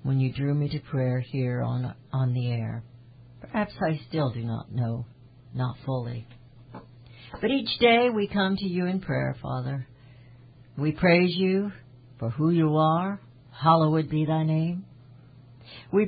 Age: 60-79